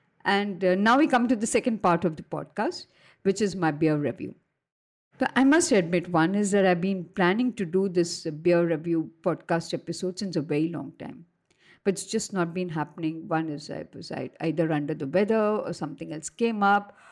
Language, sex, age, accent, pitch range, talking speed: English, female, 50-69, Indian, 170-205 Hz, 205 wpm